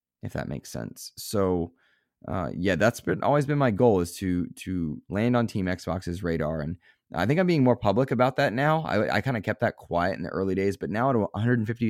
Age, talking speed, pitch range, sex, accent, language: 20-39, 230 wpm, 85-115 Hz, male, American, English